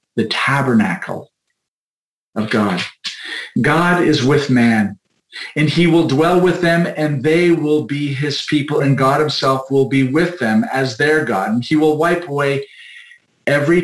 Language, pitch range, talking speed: English, 125-160 Hz, 155 wpm